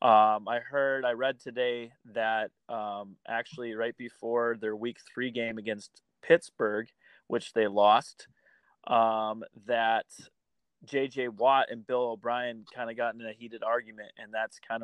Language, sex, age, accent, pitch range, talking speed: English, male, 20-39, American, 115-135 Hz, 150 wpm